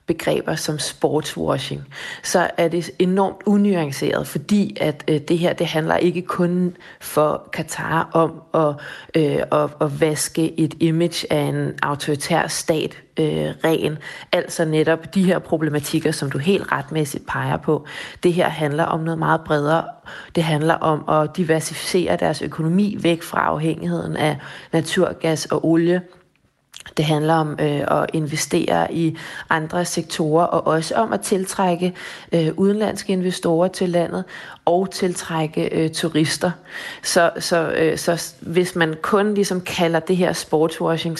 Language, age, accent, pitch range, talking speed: Danish, 30-49, native, 155-175 Hz, 135 wpm